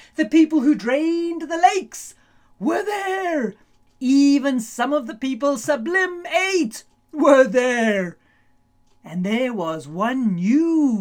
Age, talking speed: 50-69, 115 wpm